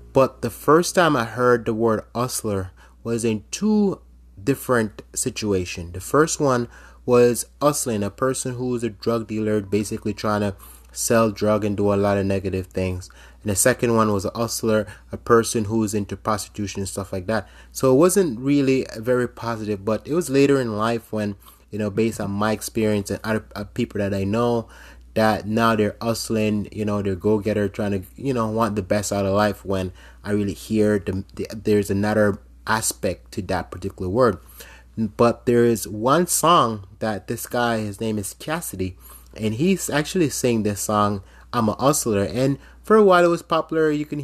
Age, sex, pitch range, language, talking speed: 20-39, male, 100-125 Hz, English, 190 wpm